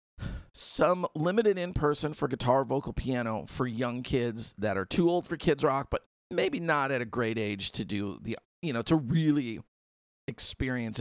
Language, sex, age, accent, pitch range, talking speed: English, male, 40-59, American, 105-140 Hz, 175 wpm